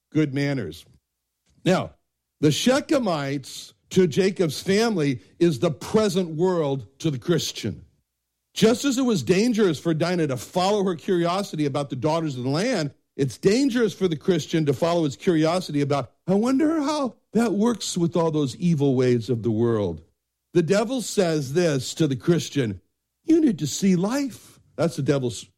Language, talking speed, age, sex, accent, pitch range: English, 165 wpm, 60-79, male, American, 130-195 Hz